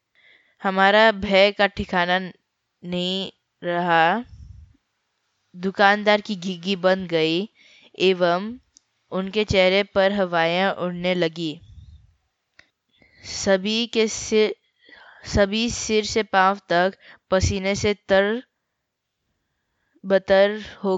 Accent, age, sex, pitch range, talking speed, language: native, 20-39, female, 180-210 Hz, 90 wpm, Hindi